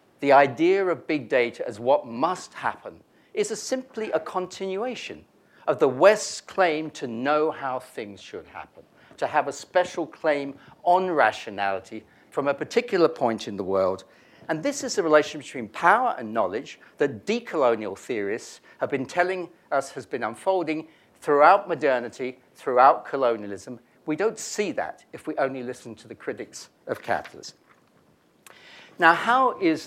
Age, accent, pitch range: 50-69, British, 125-180 Hz